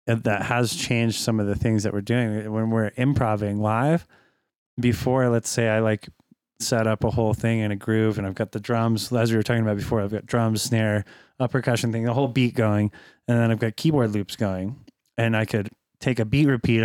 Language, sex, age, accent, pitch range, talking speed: English, male, 20-39, American, 105-120 Hz, 225 wpm